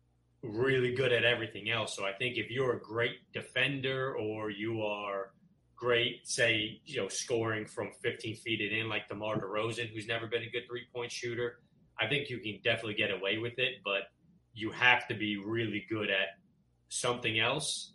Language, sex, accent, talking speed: English, male, American, 180 wpm